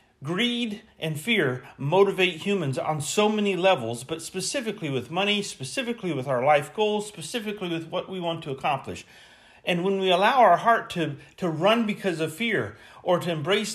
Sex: male